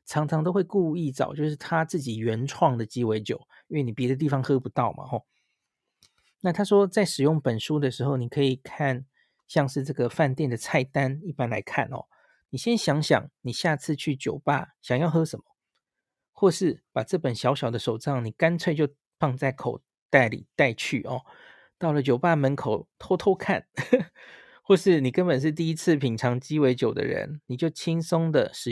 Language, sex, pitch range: Chinese, male, 130-160 Hz